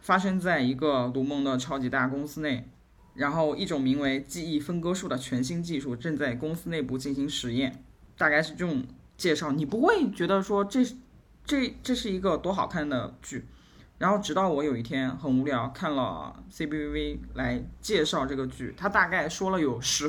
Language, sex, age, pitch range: Chinese, male, 20-39, 130-185 Hz